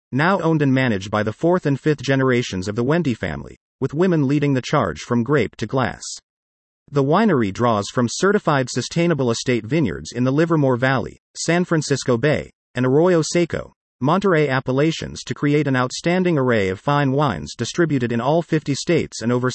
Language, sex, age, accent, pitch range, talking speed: English, male, 40-59, American, 120-160 Hz, 180 wpm